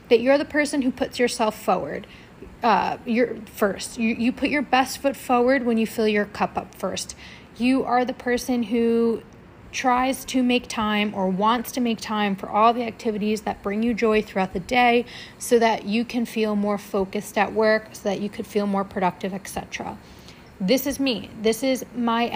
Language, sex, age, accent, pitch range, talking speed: English, female, 30-49, American, 210-245 Hz, 195 wpm